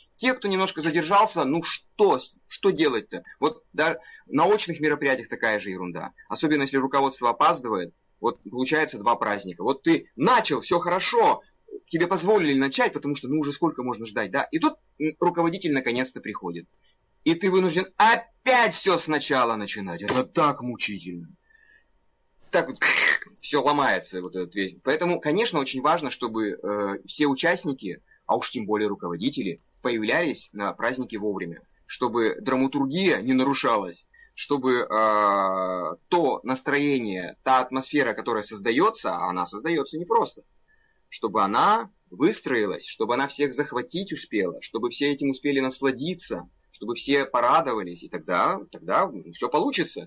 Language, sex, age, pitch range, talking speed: Russian, male, 30-49, 120-180 Hz, 135 wpm